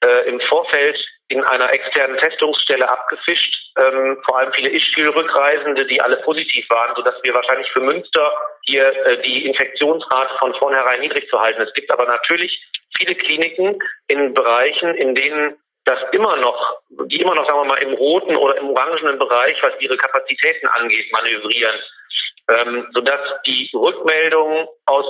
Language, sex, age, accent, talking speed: German, male, 50-69, German, 160 wpm